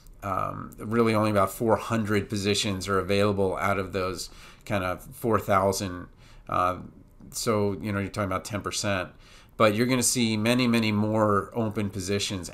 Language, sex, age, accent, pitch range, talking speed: English, male, 40-59, American, 100-125 Hz, 160 wpm